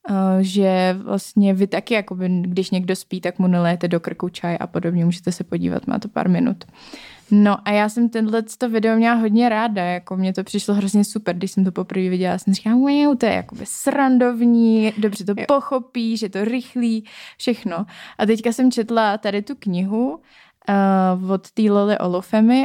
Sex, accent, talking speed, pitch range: female, native, 180 wpm, 190-225 Hz